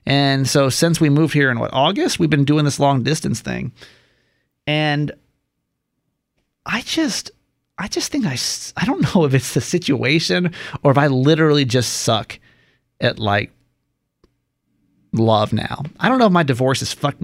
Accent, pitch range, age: American, 125-155 Hz, 30-49